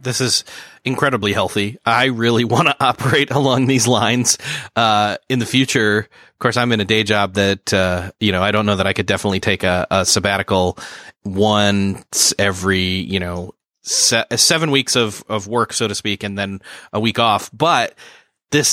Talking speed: 185 wpm